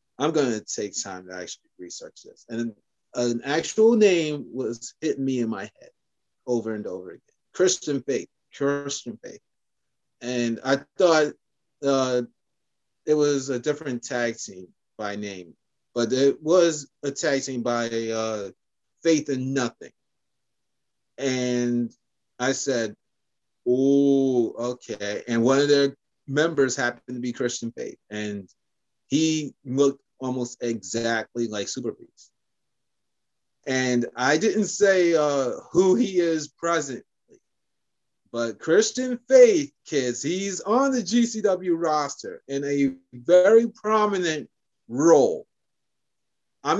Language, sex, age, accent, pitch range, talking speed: English, male, 30-49, American, 120-160 Hz, 120 wpm